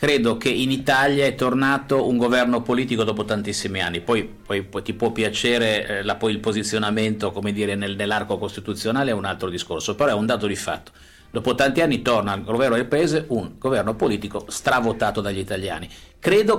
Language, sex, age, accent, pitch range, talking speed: Italian, male, 50-69, native, 105-130 Hz, 190 wpm